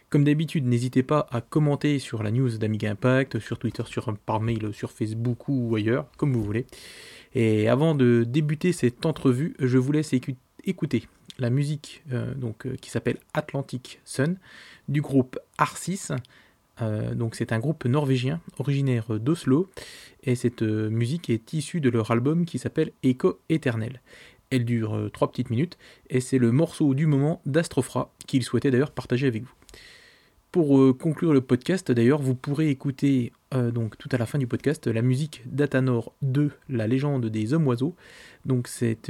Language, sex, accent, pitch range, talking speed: French, male, French, 120-145 Hz, 170 wpm